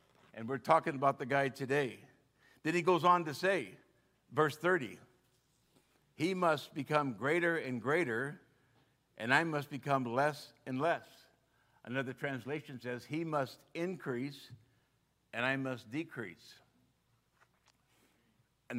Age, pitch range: 60-79, 125-170 Hz